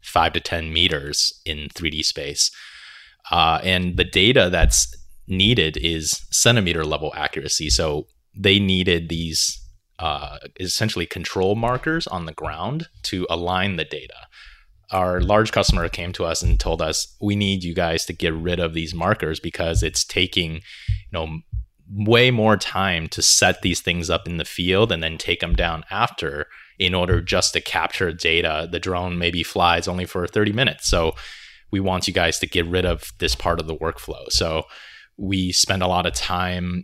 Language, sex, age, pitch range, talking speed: English, male, 30-49, 85-100 Hz, 175 wpm